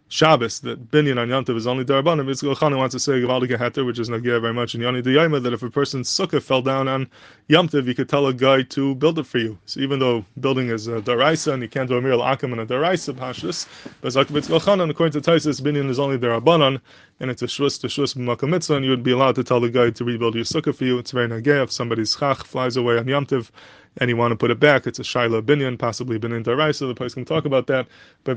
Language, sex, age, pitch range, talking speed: English, male, 20-39, 120-140 Hz, 240 wpm